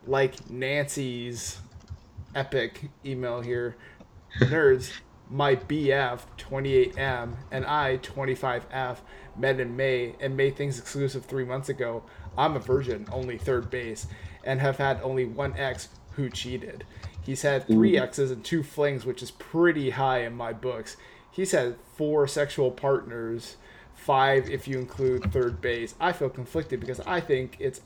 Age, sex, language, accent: 20-39, male, English, American